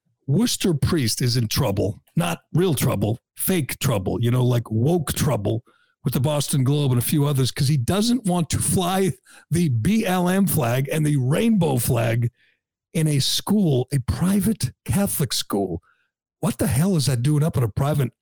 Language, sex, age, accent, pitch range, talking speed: English, male, 60-79, American, 125-170 Hz, 175 wpm